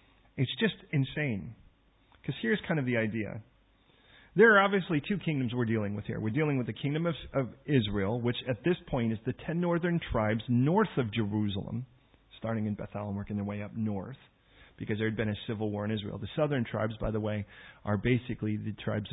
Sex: male